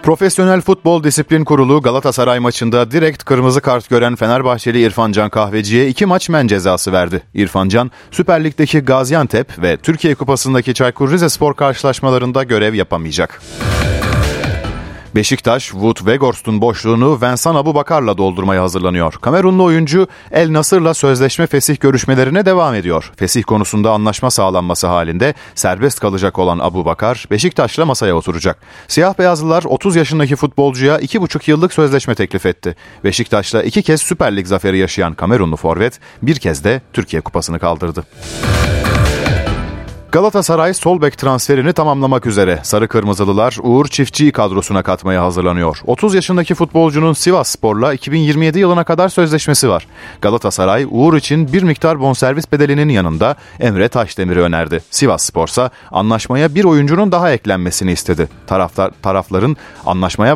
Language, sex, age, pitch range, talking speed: Turkish, male, 40-59, 95-155 Hz, 130 wpm